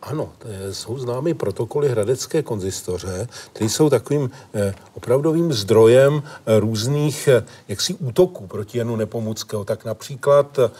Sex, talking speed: male, 105 wpm